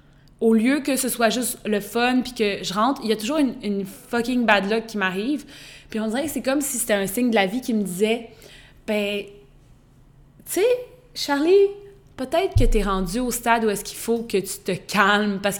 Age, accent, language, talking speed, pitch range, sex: 20-39, Canadian, French, 225 wpm, 185-225 Hz, female